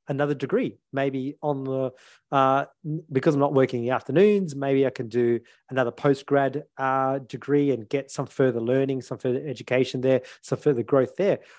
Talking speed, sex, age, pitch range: 180 wpm, male, 30-49, 125-145 Hz